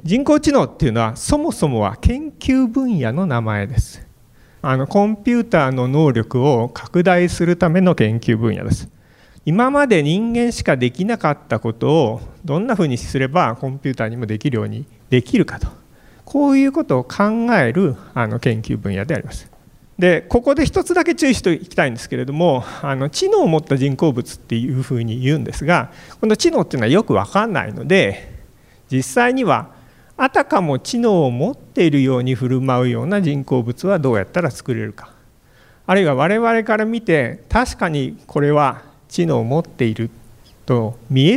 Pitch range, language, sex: 120-195 Hz, Japanese, male